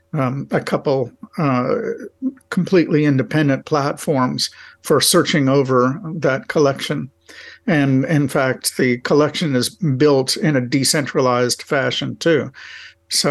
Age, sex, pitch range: 50-69, male, 130-165 Hz